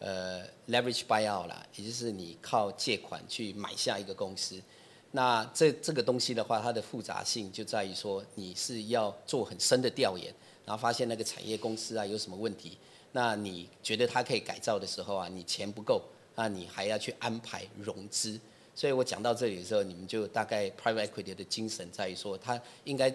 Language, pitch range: Chinese, 100-120 Hz